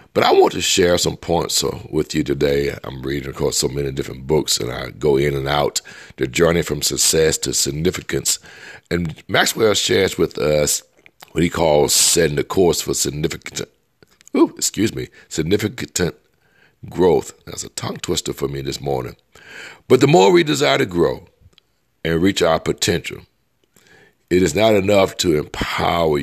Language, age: English, 60-79